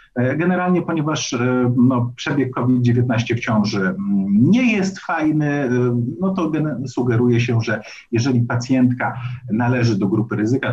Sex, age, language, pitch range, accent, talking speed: male, 50-69, Polish, 120-160 Hz, native, 120 wpm